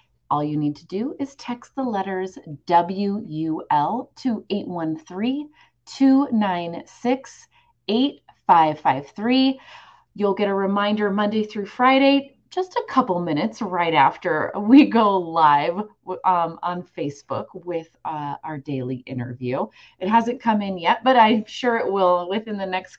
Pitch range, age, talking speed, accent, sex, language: 175-245 Hz, 30-49, 130 wpm, American, female, English